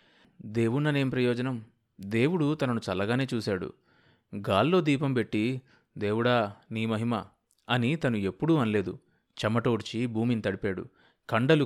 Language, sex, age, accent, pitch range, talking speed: Telugu, male, 30-49, native, 105-135 Hz, 105 wpm